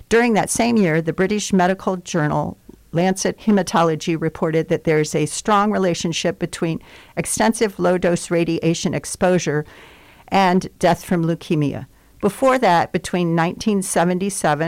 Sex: female